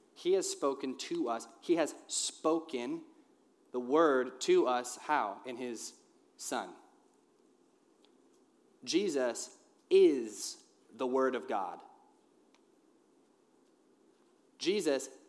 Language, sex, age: English, male, 30-49